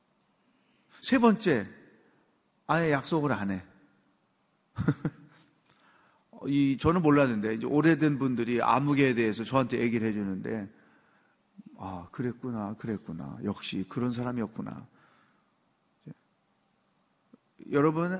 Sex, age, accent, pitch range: male, 40-59, native, 120-180 Hz